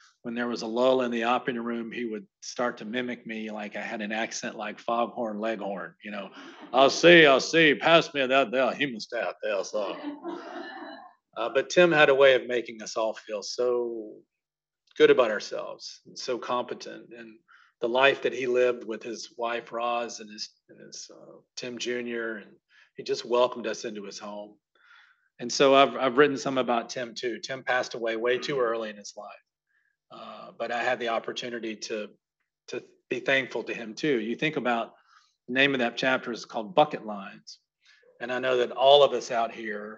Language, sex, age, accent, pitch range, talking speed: English, male, 40-59, American, 110-130 Hz, 205 wpm